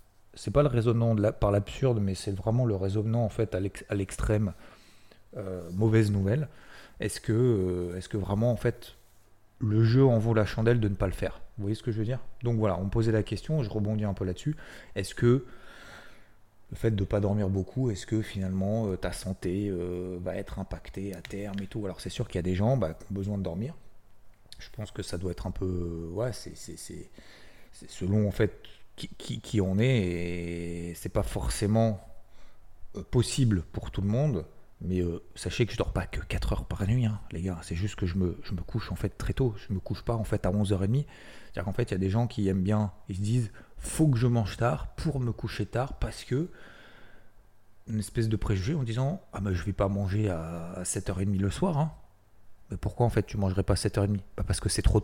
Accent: French